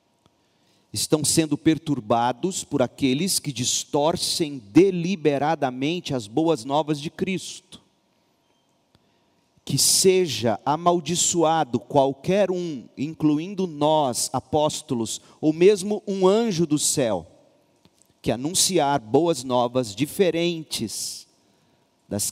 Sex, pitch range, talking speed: male, 120-160 Hz, 90 wpm